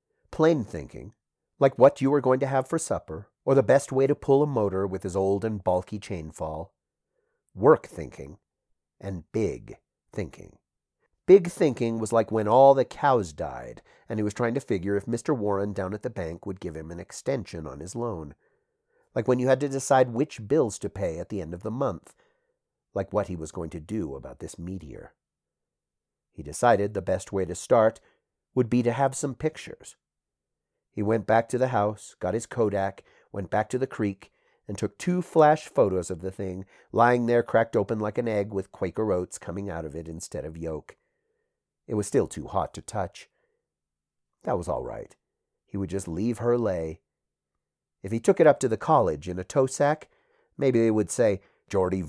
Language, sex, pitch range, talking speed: English, male, 95-135 Hz, 200 wpm